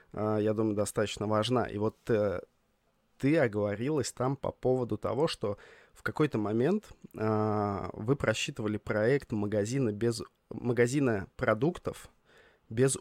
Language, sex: Russian, male